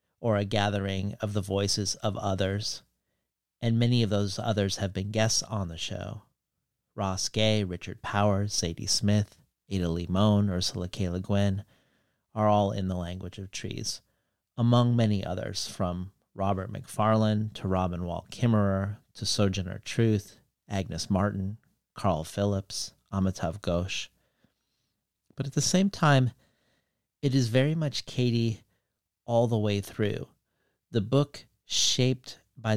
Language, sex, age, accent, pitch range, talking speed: English, male, 40-59, American, 95-115 Hz, 135 wpm